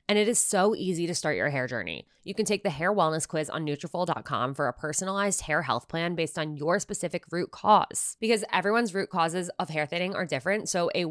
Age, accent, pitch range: 20-39, American, 145-195 Hz